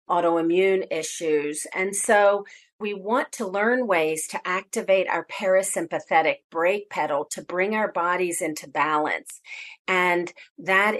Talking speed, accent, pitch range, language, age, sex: 125 wpm, American, 170-205 Hz, English, 40-59, female